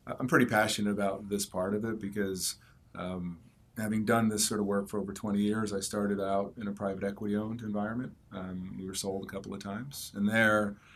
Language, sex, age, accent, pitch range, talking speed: English, male, 30-49, American, 95-105 Hz, 210 wpm